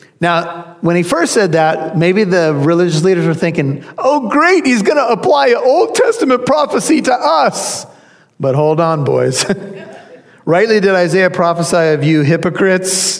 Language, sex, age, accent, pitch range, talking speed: English, male, 40-59, American, 145-190 Hz, 155 wpm